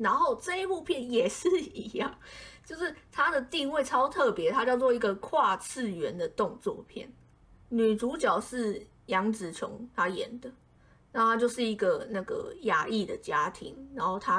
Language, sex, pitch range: Chinese, female, 210-270 Hz